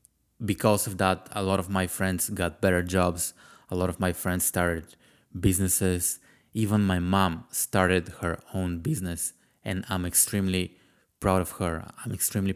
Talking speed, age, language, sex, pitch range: 160 wpm, 20-39, English, male, 90-100 Hz